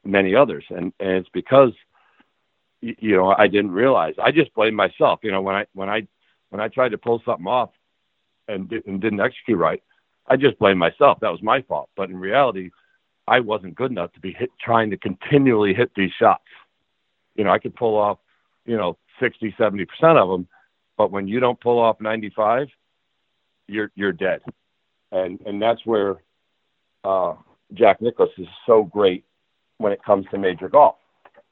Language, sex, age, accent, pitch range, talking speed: English, male, 60-79, American, 100-130 Hz, 180 wpm